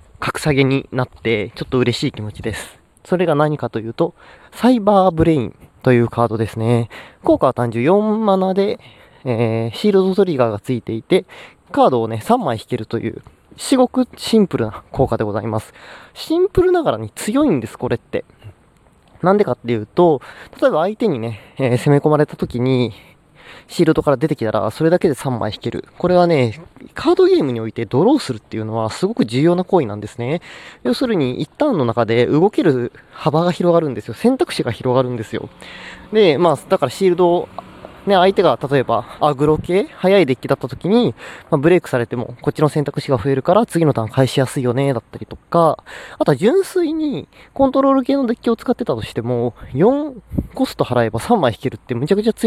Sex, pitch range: male, 120-190 Hz